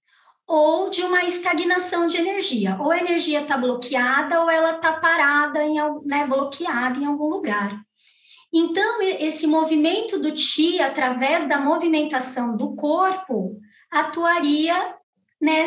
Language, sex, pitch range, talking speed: Portuguese, male, 250-320 Hz, 125 wpm